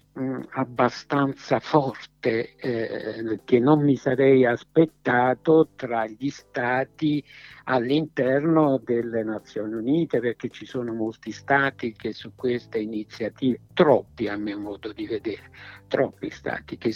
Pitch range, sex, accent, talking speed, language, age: 115-145 Hz, male, native, 115 wpm, Italian, 60-79